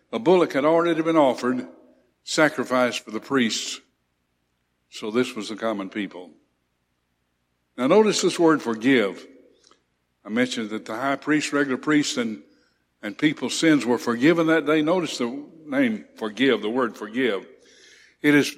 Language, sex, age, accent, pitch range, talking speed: English, male, 60-79, American, 105-175 Hz, 150 wpm